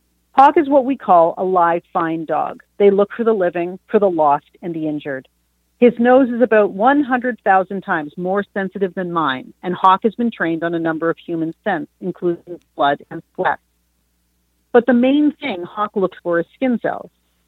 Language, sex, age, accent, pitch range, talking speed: English, female, 40-59, American, 160-215 Hz, 190 wpm